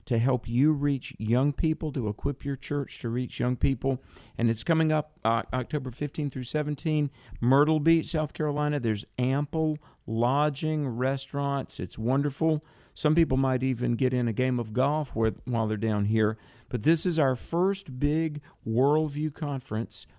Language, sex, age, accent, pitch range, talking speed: English, male, 50-69, American, 115-140 Hz, 165 wpm